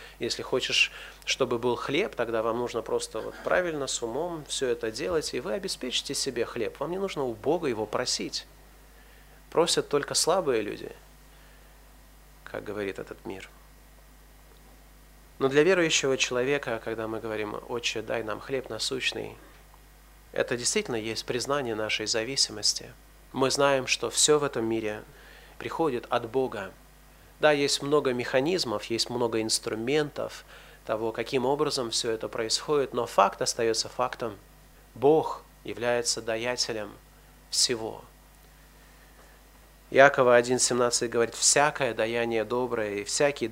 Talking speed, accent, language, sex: 125 wpm, native, Russian, male